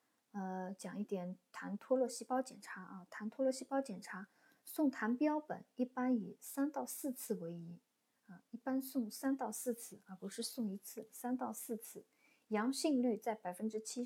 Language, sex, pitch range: Chinese, female, 195-255 Hz